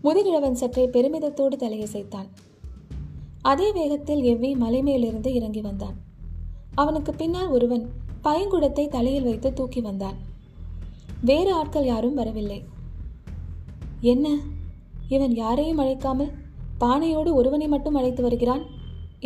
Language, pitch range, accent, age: Tamil, 225-290 Hz, native, 20-39